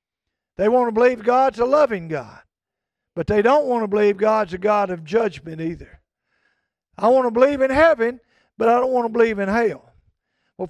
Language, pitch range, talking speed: English, 185-245 Hz, 195 wpm